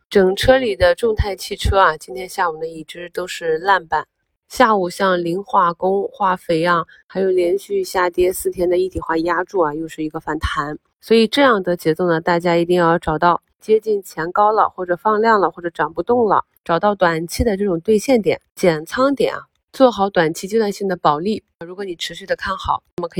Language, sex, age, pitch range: Chinese, female, 20-39, 160-215 Hz